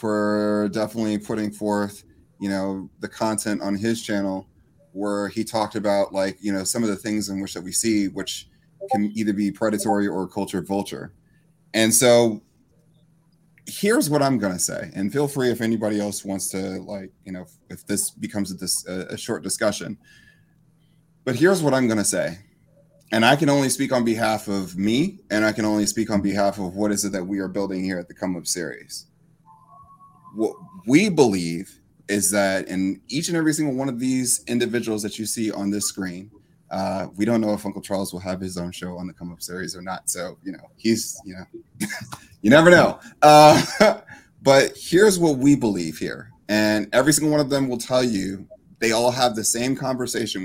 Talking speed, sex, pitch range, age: 195 wpm, male, 95-125 Hz, 30-49